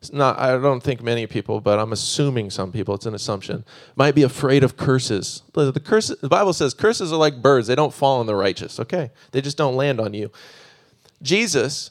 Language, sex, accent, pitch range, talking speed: English, male, American, 125-160 Hz, 200 wpm